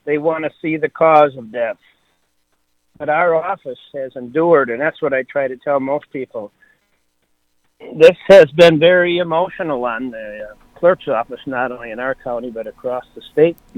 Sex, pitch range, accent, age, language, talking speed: male, 125-155 Hz, American, 50-69, English, 180 wpm